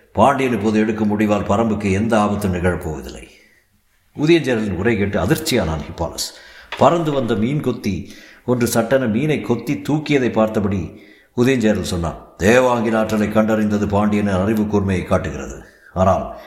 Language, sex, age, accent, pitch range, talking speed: Tamil, male, 60-79, native, 105-130 Hz, 115 wpm